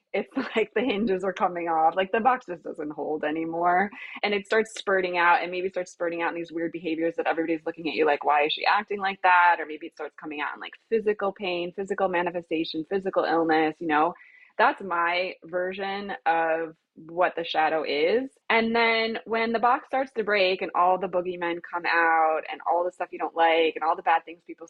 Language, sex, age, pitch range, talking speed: English, female, 20-39, 160-195 Hz, 220 wpm